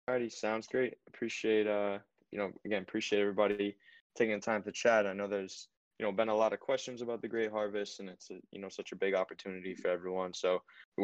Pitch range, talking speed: 95-110 Hz, 230 wpm